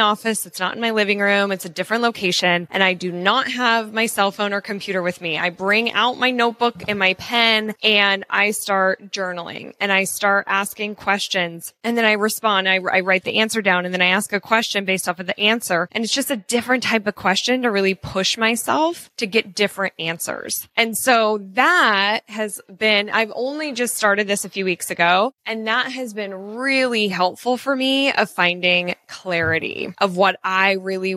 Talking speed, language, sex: 205 wpm, English, female